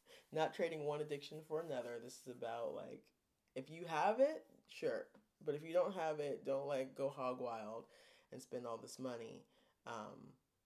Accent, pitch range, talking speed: American, 125-160 Hz, 180 wpm